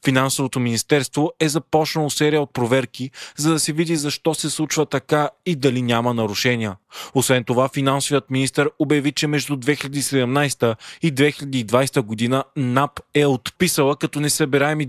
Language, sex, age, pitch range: Bulgarian, male, 20-39, 125-150 Hz